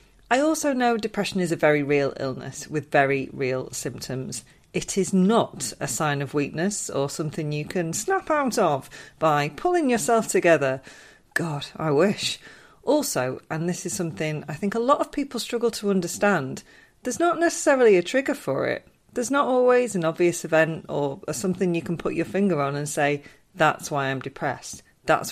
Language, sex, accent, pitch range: English, female, British, 155-225 Hz